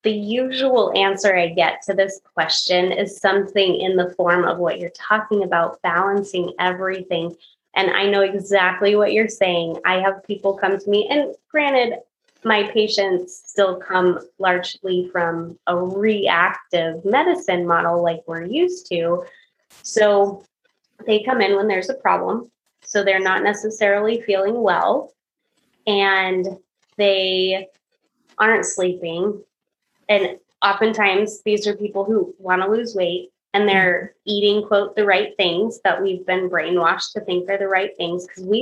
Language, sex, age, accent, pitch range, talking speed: English, female, 20-39, American, 185-215 Hz, 150 wpm